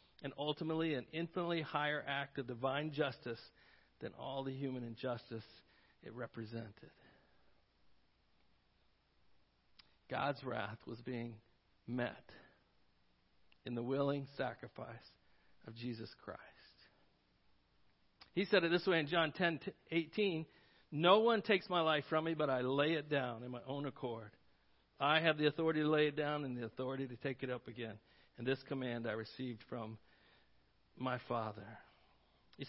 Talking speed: 145 wpm